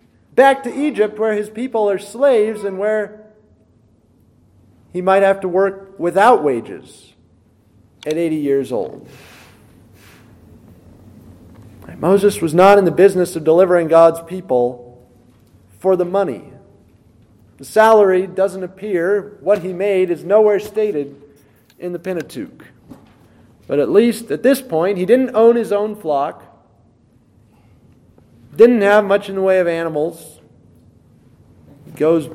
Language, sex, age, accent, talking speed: English, male, 40-59, American, 125 wpm